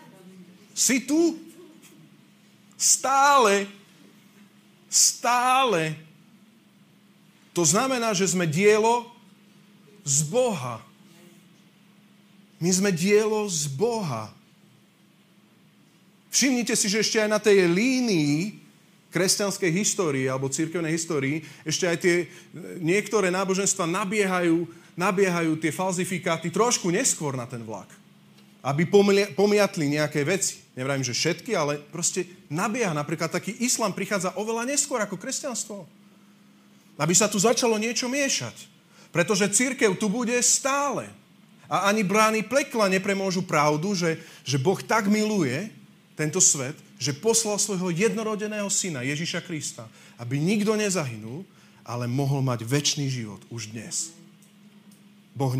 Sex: male